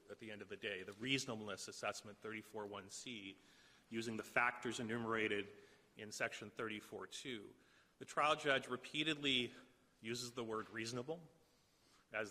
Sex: male